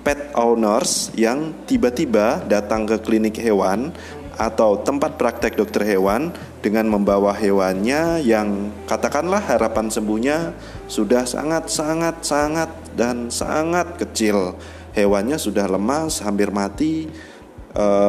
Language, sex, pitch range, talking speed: Indonesian, male, 95-110 Hz, 110 wpm